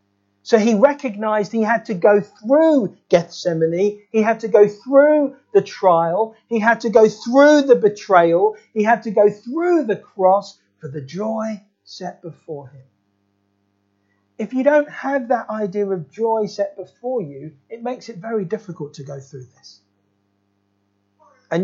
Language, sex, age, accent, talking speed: English, male, 40-59, British, 160 wpm